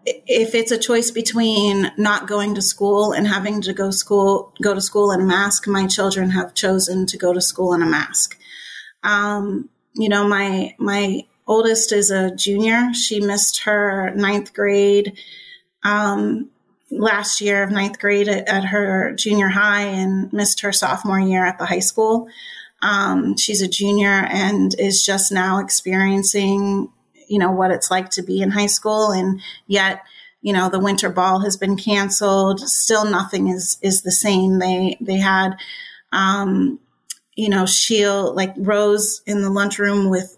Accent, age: American, 30-49